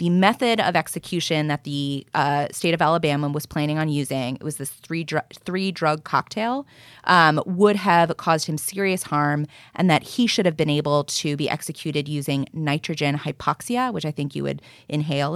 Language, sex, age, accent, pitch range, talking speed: English, female, 20-39, American, 145-185 Hz, 185 wpm